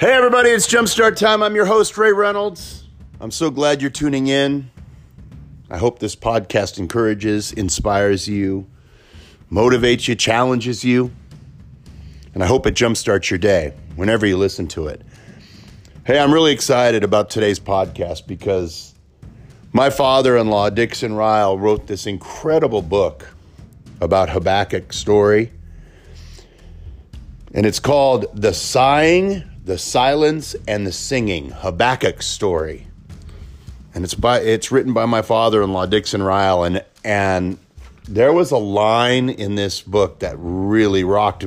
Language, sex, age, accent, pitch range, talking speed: English, male, 40-59, American, 90-125 Hz, 135 wpm